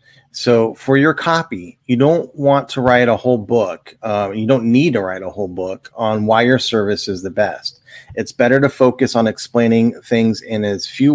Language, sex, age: English, male, 30-49